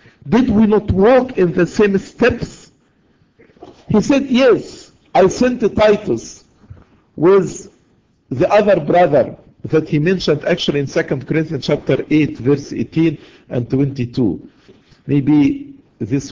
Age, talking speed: 50-69, 125 wpm